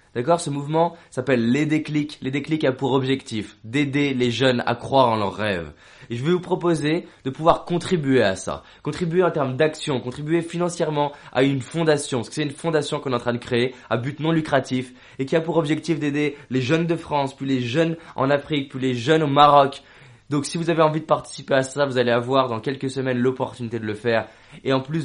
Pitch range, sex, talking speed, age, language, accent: 120-150 Hz, male, 230 wpm, 20-39, French, French